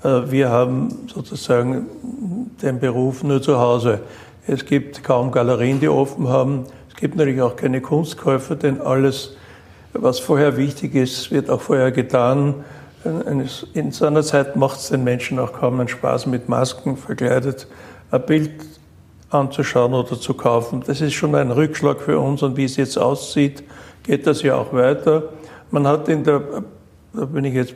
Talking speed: 165 wpm